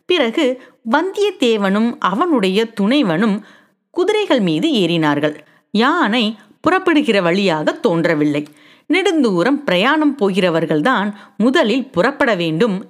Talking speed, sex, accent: 85 wpm, female, native